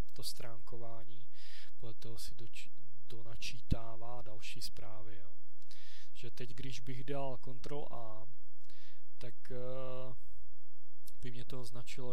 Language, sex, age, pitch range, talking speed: Czech, male, 20-39, 115-135 Hz, 110 wpm